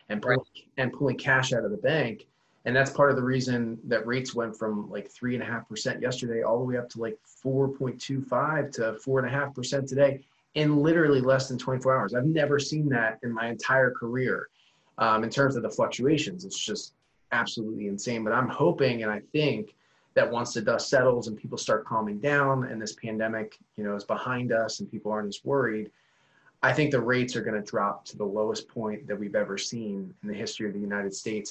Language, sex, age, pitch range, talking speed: English, male, 30-49, 105-135 Hz, 220 wpm